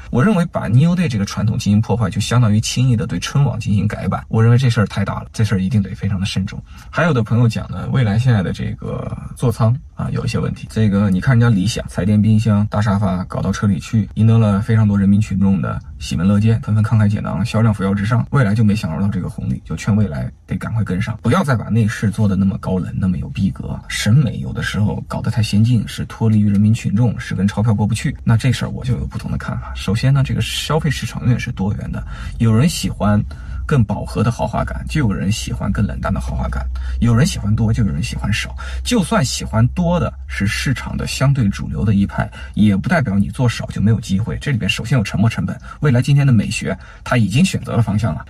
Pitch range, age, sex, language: 100-120 Hz, 20-39, male, Chinese